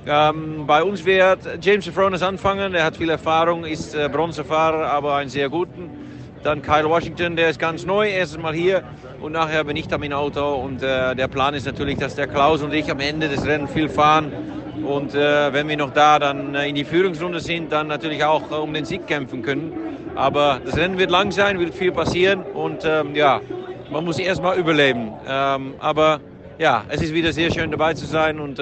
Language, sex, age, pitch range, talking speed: German, male, 50-69, 140-160 Hz, 215 wpm